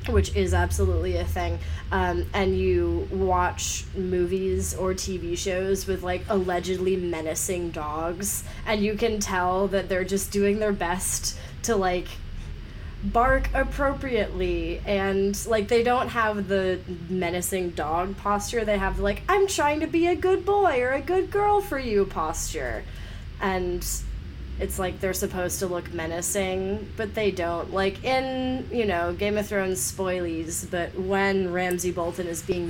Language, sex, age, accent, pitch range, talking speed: English, female, 20-39, American, 170-235 Hz, 150 wpm